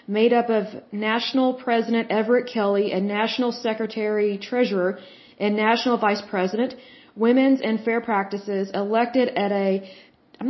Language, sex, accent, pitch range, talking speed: Hindi, female, American, 205-245 Hz, 125 wpm